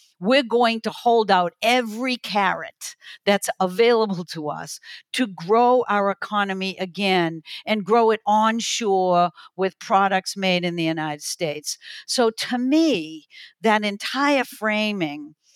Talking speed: 125 wpm